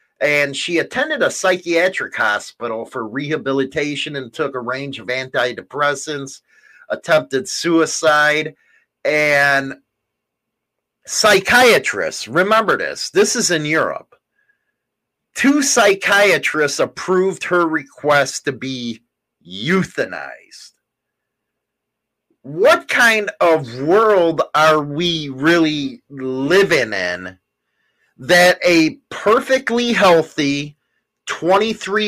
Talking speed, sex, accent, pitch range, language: 85 wpm, male, American, 140-190 Hz, English